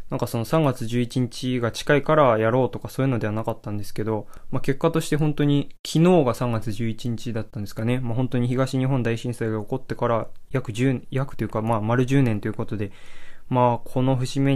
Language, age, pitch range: Japanese, 20-39, 115-135 Hz